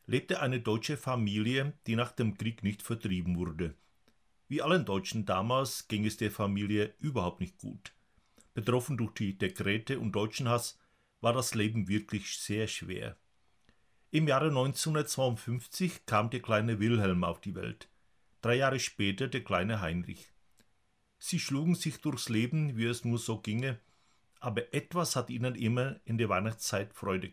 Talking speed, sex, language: 155 wpm, male, Czech